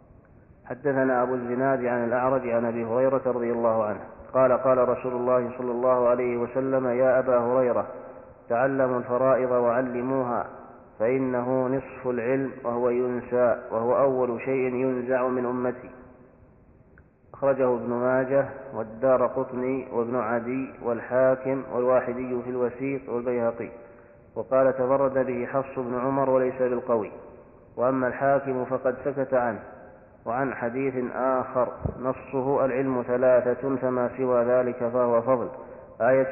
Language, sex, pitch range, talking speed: Arabic, male, 125-130 Hz, 120 wpm